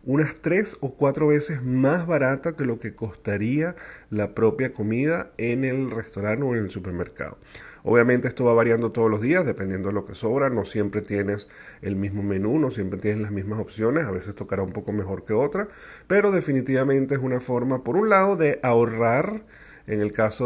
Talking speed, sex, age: 195 wpm, male, 30-49